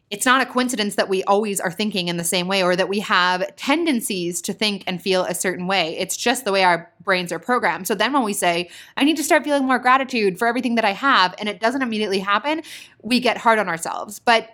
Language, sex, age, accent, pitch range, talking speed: English, female, 20-39, American, 190-240 Hz, 250 wpm